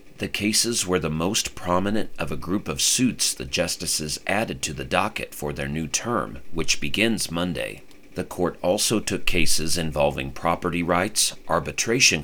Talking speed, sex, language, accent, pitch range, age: 160 wpm, male, English, American, 75-95 Hz, 40-59